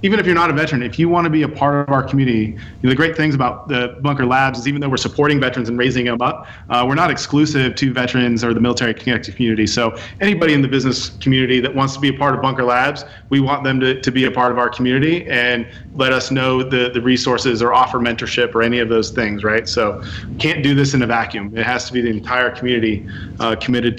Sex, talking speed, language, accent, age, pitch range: male, 260 wpm, English, American, 30-49, 115-135 Hz